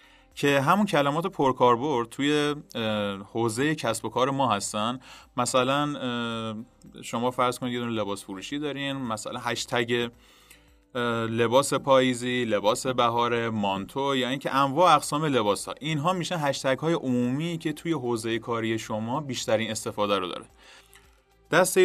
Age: 30-49